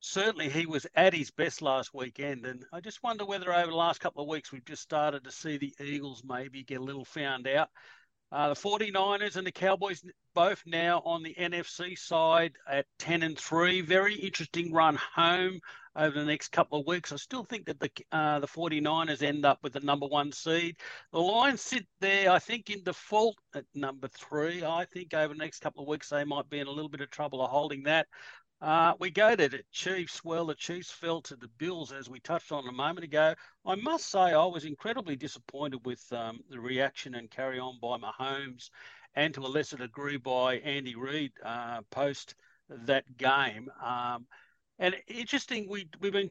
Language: English